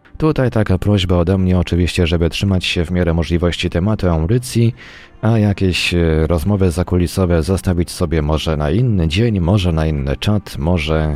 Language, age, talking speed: Polish, 30-49, 155 wpm